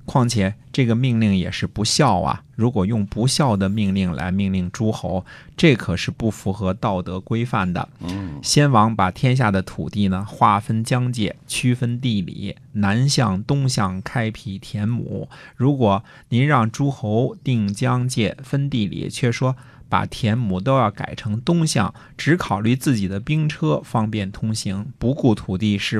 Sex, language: male, Chinese